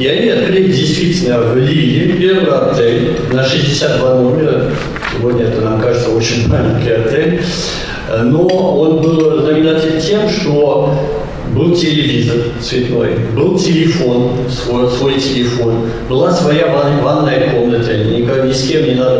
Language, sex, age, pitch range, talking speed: Russian, male, 50-69, 125-165 Hz, 130 wpm